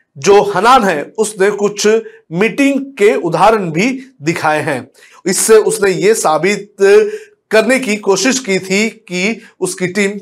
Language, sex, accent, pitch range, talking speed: Hindi, male, native, 175-220 Hz, 135 wpm